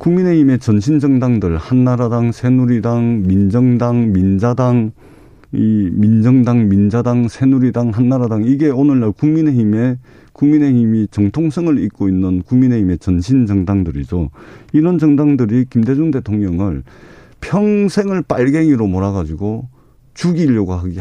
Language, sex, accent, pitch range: Korean, male, native, 105-155 Hz